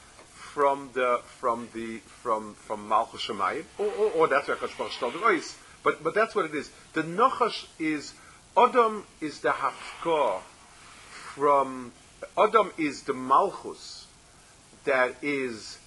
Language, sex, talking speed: English, male, 130 wpm